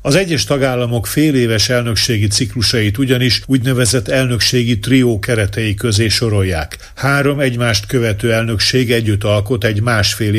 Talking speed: 125 wpm